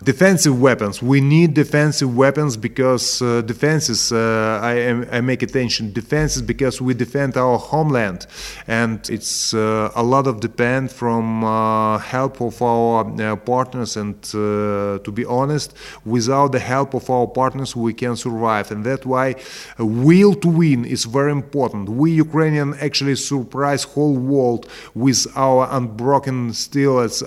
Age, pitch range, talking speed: 30-49, 120-135 Hz, 150 wpm